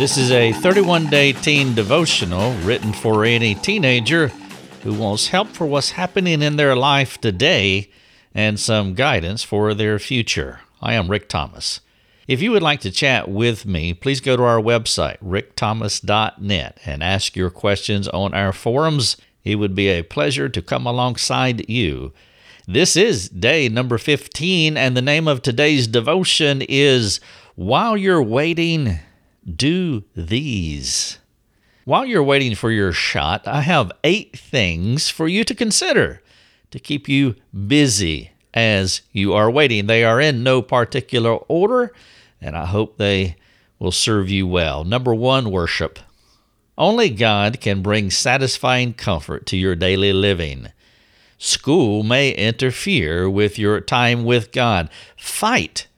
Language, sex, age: English, male, 50-69